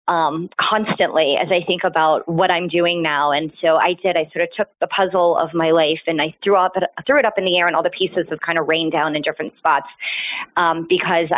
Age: 30-49